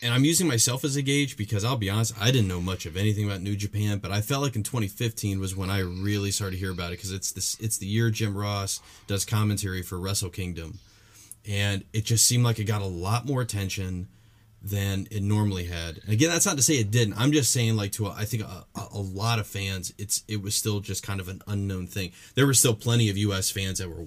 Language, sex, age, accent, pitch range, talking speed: English, male, 30-49, American, 95-110 Hz, 250 wpm